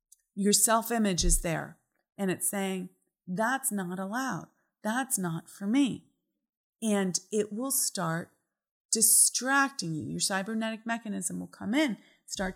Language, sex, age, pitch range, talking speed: English, female, 30-49, 185-245 Hz, 130 wpm